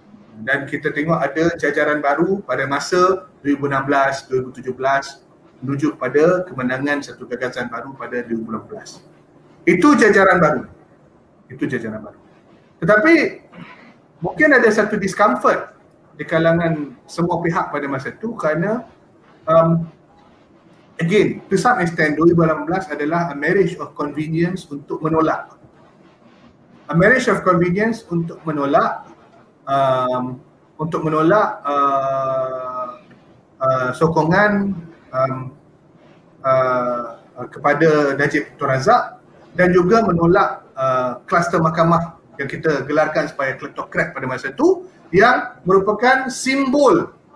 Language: Malay